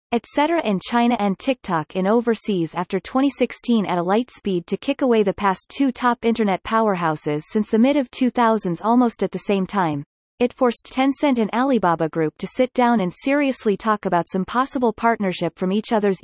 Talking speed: 190 wpm